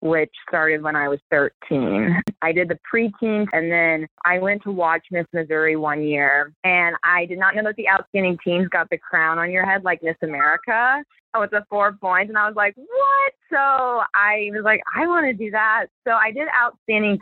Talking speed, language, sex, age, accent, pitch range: 210 wpm, English, female, 20-39, American, 155-195 Hz